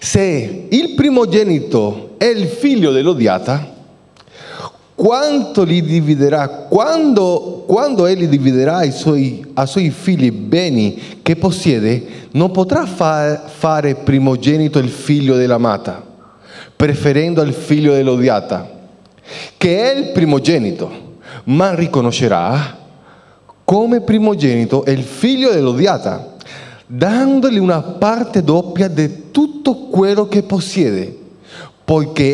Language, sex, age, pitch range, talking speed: Italian, male, 30-49, 145-210 Hz, 100 wpm